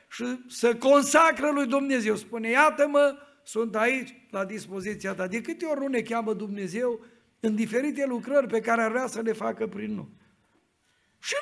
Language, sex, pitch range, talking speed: Romanian, male, 220-300 Hz, 170 wpm